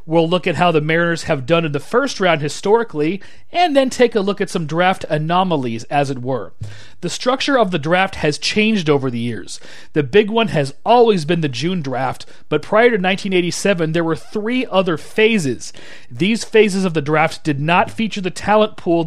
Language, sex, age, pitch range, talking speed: English, male, 30-49, 150-195 Hz, 200 wpm